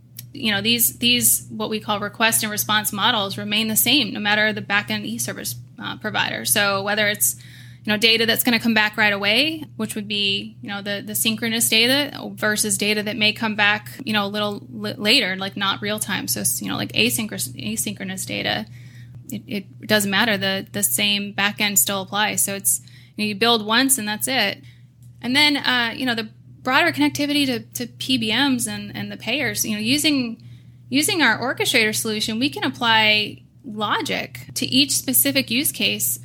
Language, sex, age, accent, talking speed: English, female, 10-29, American, 195 wpm